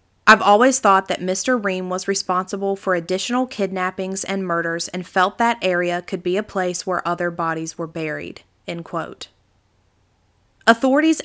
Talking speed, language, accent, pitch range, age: 150 wpm, English, American, 175-215 Hz, 30-49